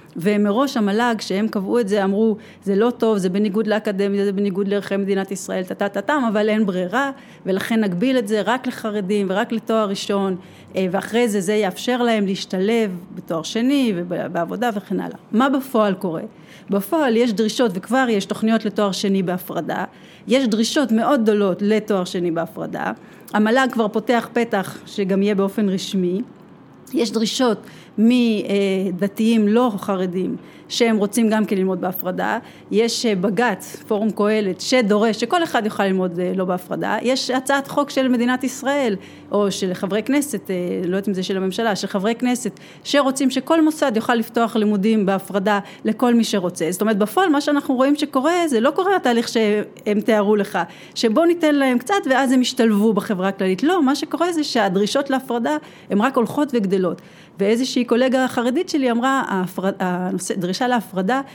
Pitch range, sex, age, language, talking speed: 195-245 Hz, female, 30-49, Hebrew, 150 wpm